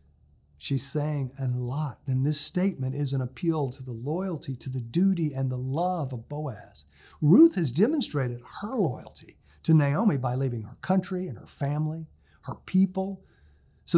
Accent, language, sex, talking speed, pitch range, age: American, English, male, 165 wpm, 120-170 Hz, 50-69